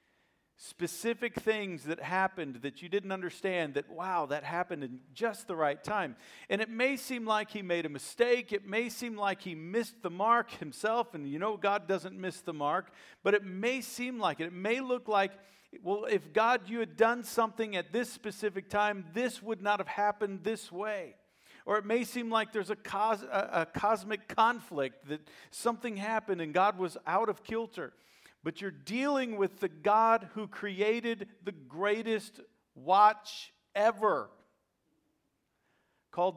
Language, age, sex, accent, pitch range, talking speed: English, 50-69, male, American, 180-225 Hz, 170 wpm